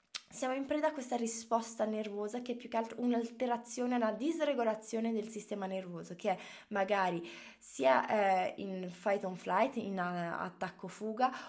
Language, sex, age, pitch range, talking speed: Italian, female, 20-39, 195-275 Hz, 145 wpm